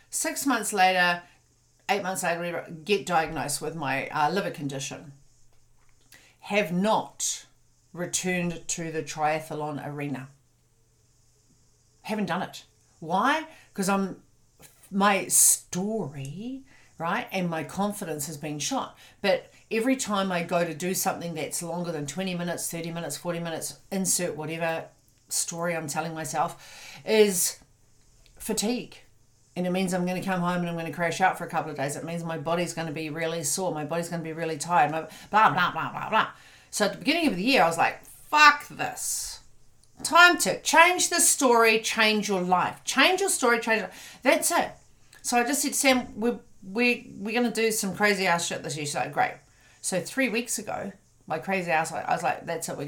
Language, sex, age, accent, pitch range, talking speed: English, female, 50-69, Australian, 155-215 Hz, 185 wpm